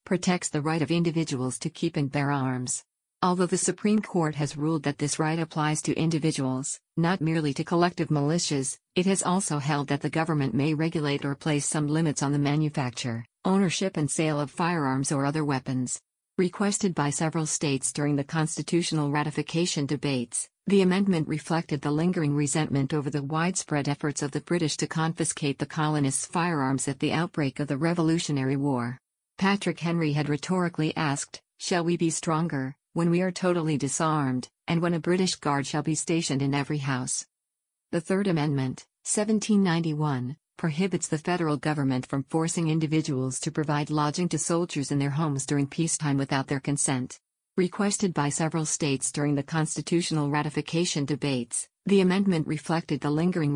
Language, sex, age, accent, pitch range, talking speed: English, female, 50-69, American, 145-170 Hz, 165 wpm